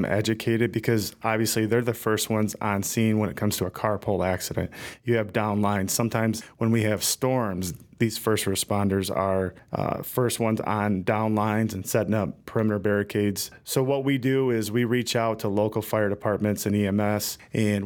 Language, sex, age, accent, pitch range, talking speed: English, male, 30-49, American, 100-115 Hz, 185 wpm